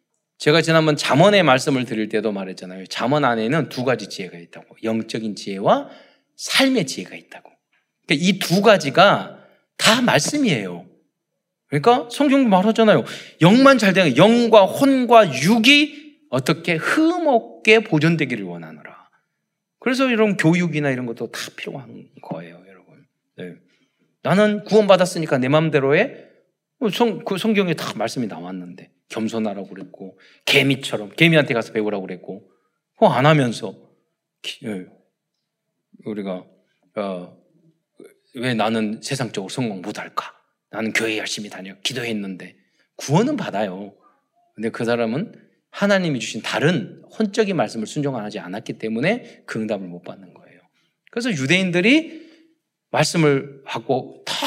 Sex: male